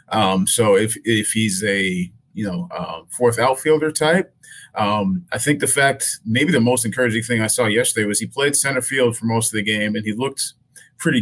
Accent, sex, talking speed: American, male, 210 wpm